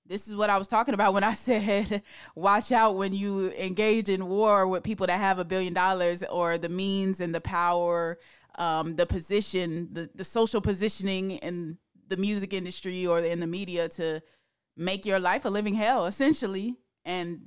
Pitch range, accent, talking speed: 170-195 Hz, American, 185 wpm